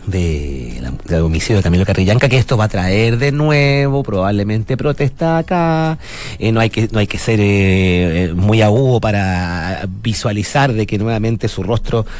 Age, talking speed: 40-59, 175 wpm